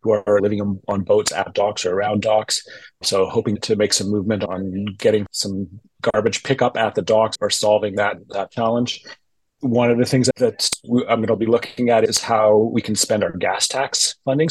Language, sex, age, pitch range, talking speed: English, male, 30-49, 105-120 Hz, 205 wpm